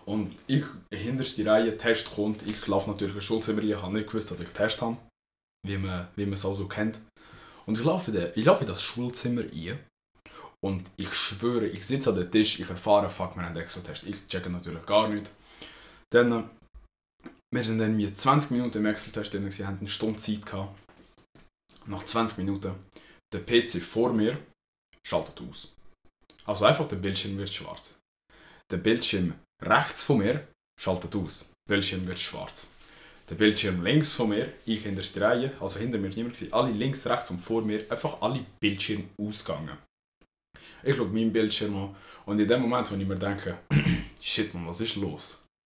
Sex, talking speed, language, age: male, 180 wpm, German, 20-39